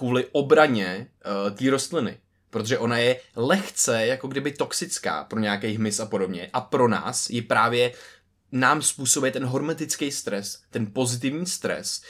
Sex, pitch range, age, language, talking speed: male, 105-125 Hz, 20-39, Czech, 150 wpm